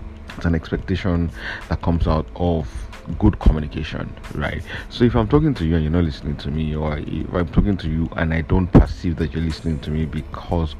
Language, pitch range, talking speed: English, 75-90 Hz, 210 wpm